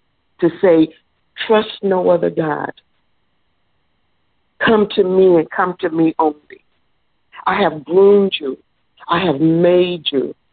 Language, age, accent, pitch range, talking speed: English, 60-79, American, 145-195 Hz, 125 wpm